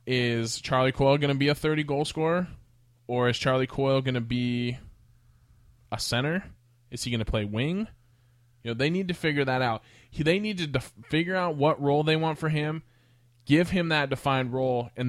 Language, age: English, 20-39